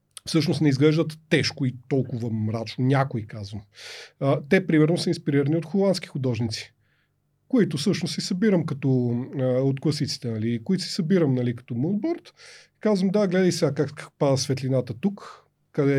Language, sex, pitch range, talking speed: Bulgarian, male, 125-170 Hz, 145 wpm